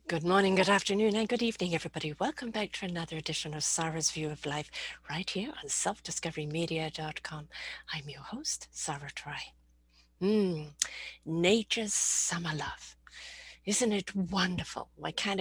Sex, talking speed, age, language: female, 140 wpm, 50-69, English